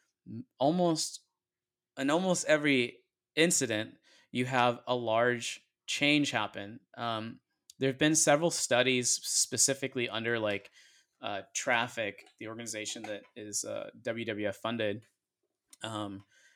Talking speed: 110 wpm